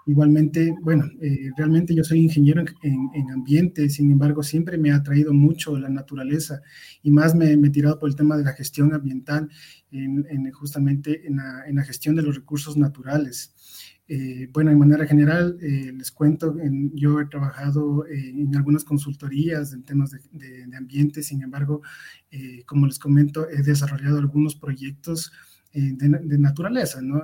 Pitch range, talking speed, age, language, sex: 135-150 Hz, 180 wpm, 20-39, English, male